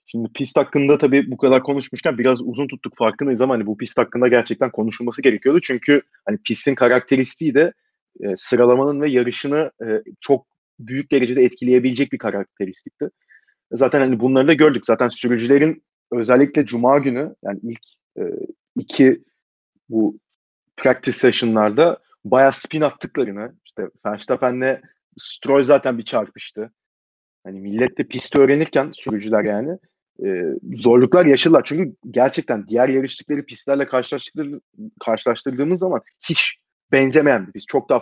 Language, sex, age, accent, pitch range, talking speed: Turkish, male, 30-49, native, 120-150 Hz, 130 wpm